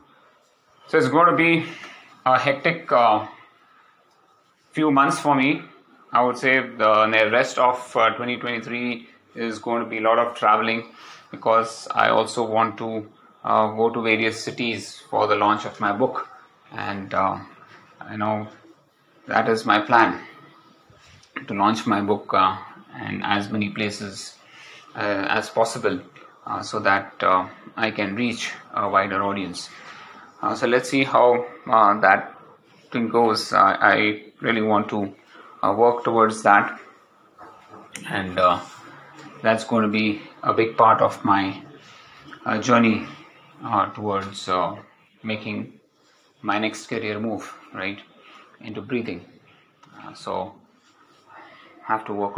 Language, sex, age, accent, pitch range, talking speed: English, male, 30-49, Indian, 105-120 Hz, 140 wpm